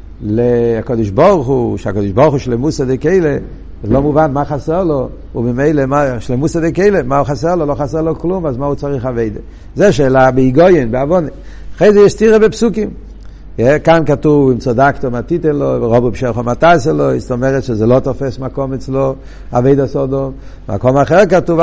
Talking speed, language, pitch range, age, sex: 180 wpm, Hebrew, 115-155 Hz, 60-79, male